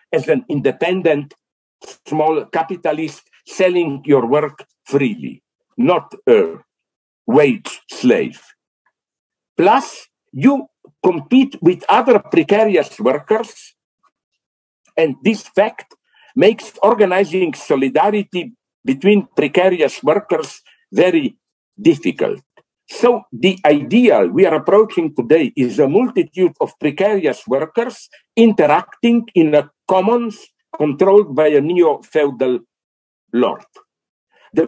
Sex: male